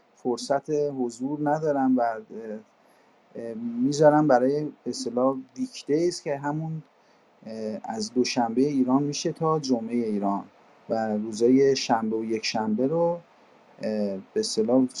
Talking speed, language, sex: 110 wpm, Persian, male